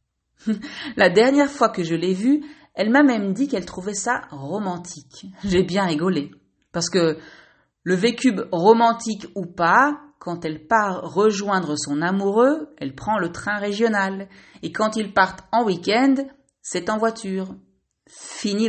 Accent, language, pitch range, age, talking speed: French, French, 170-230 Hz, 40-59, 150 wpm